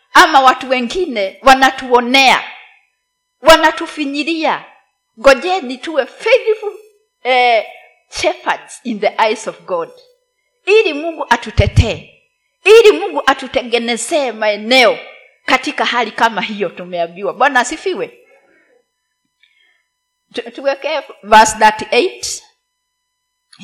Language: Swahili